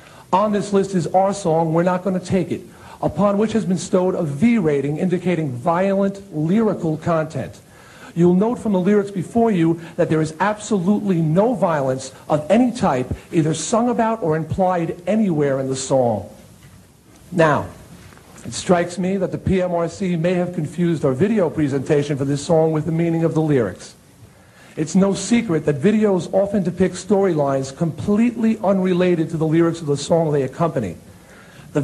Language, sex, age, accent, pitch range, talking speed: English, male, 50-69, American, 155-195 Hz, 165 wpm